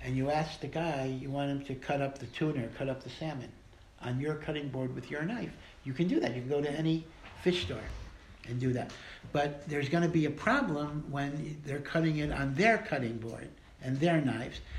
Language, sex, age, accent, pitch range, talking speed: English, male, 60-79, American, 115-150 Hz, 225 wpm